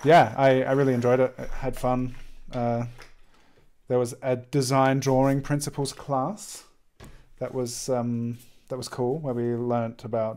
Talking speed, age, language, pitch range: 155 wpm, 30-49, English, 115-130 Hz